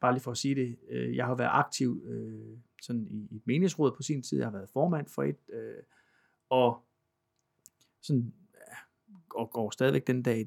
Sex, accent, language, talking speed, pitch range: male, native, Danish, 180 wpm, 115-140 Hz